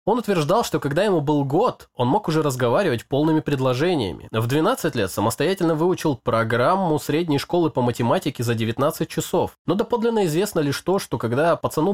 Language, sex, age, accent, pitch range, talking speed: Russian, male, 20-39, native, 115-165 Hz, 170 wpm